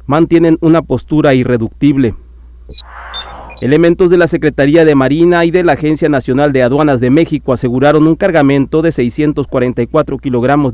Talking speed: 140 wpm